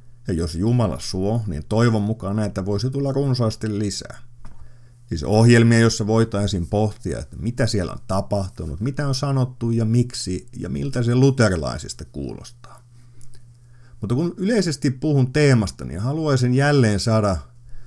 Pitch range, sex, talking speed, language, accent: 100-125 Hz, male, 140 wpm, Finnish, native